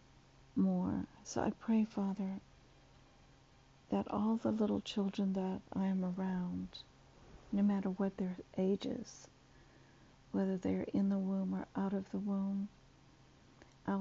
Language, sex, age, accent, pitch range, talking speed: English, female, 60-79, American, 180-200 Hz, 130 wpm